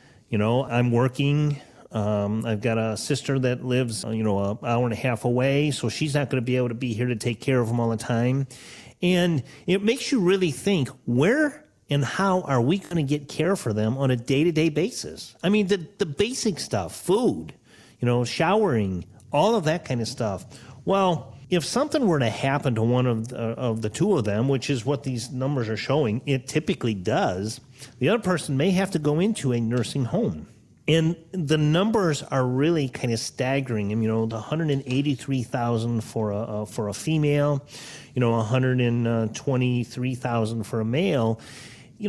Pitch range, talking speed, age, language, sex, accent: 120-155 Hz, 195 wpm, 40-59, English, male, American